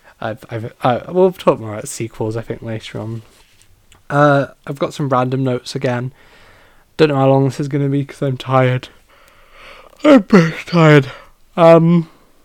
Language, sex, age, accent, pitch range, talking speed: English, male, 10-29, British, 115-155 Hz, 170 wpm